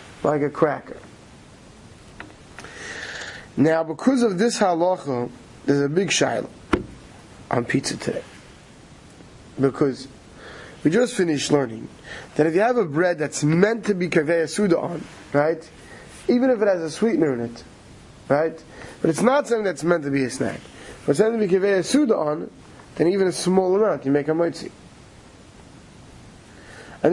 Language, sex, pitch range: English, male, 145-185 Hz